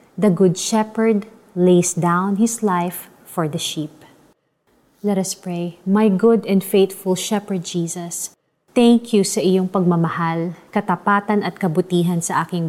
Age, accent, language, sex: 30-49, native, Filipino, female